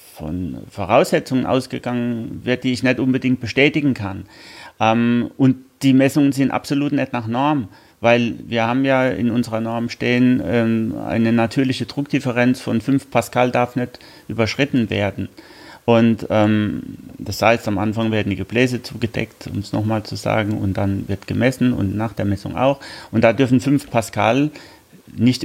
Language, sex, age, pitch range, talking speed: German, male, 30-49, 110-130 Hz, 160 wpm